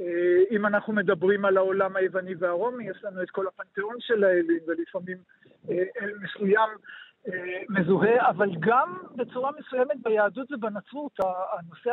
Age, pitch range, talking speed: 50-69, 190-235 Hz, 125 wpm